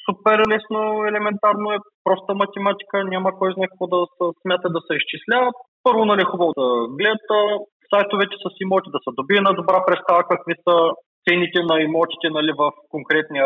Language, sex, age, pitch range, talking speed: Bulgarian, male, 20-39, 160-215 Hz, 170 wpm